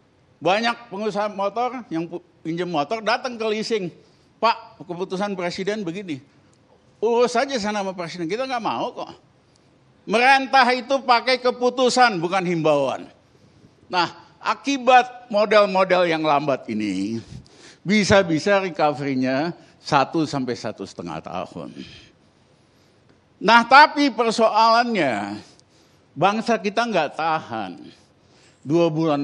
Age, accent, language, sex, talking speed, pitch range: 50-69, native, Indonesian, male, 95 wpm, 140-225 Hz